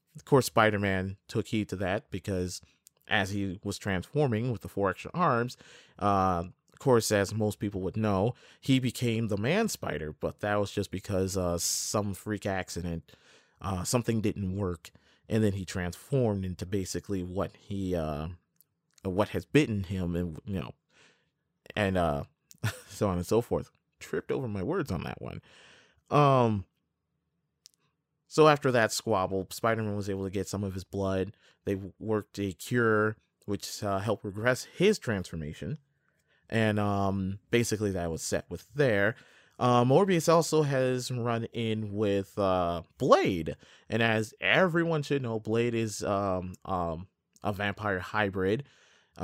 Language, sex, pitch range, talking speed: English, male, 95-115 Hz, 155 wpm